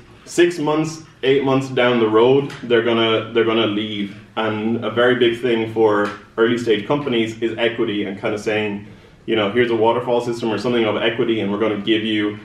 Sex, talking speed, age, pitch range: male, 210 wpm, 20-39, 110-135 Hz